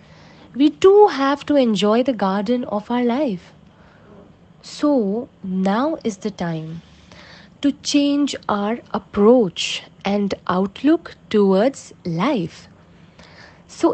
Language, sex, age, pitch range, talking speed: English, female, 20-39, 195-275 Hz, 105 wpm